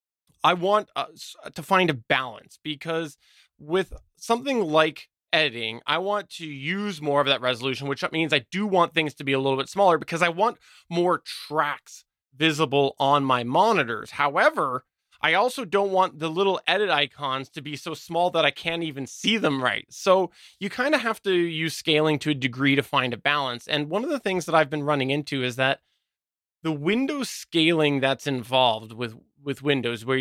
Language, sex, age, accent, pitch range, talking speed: English, male, 20-39, American, 130-180 Hz, 195 wpm